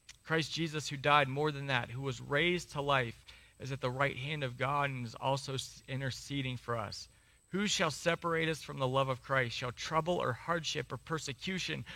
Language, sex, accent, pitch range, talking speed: English, male, American, 130-190 Hz, 200 wpm